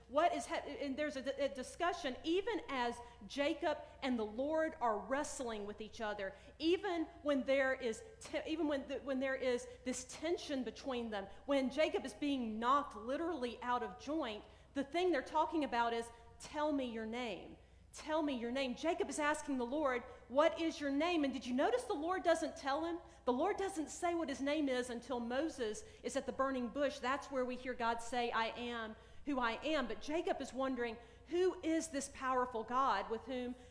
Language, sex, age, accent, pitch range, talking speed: English, female, 40-59, American, 245-320 Hz, 200 wpm